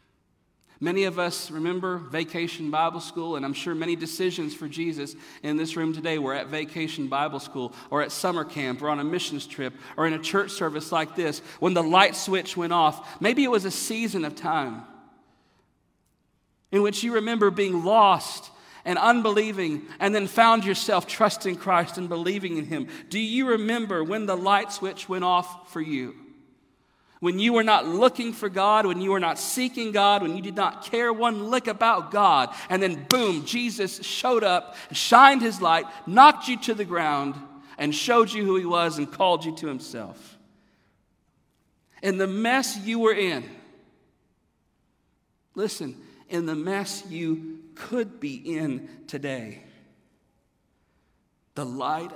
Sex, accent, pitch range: male, American, 155-205 Hz